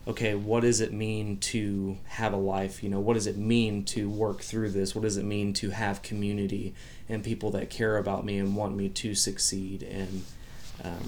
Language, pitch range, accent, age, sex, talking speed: English, 100-115 Hz, American, 30-49, male, 210 wpm